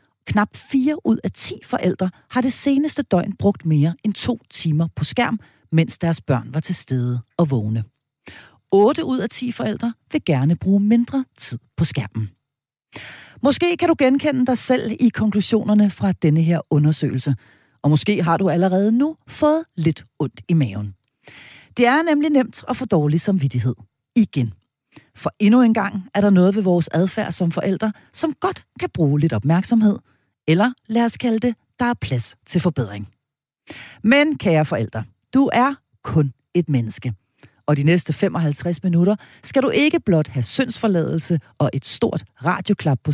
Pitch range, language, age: 145-235 Hz, Danish, 40-59